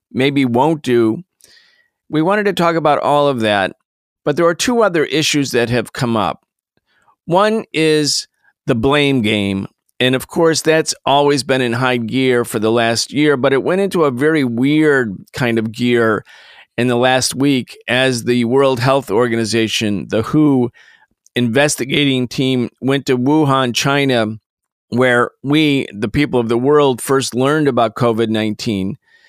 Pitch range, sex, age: 120-145 Hz, male, 40-59